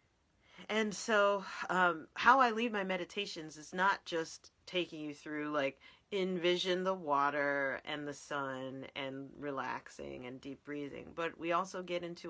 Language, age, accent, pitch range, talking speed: English, 40-59, American, 140-185 Hz, 150 wpm